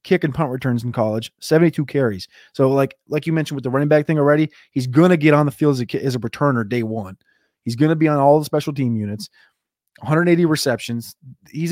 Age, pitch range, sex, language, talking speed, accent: 20-39, 125-150 Hz, male, English, 235 wpm, American